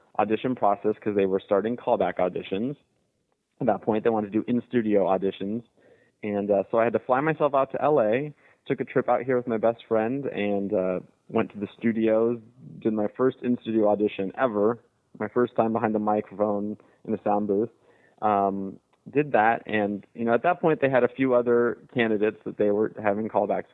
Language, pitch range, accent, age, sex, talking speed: English, 100-120 Hz, American, 20-39, male, 200 wpm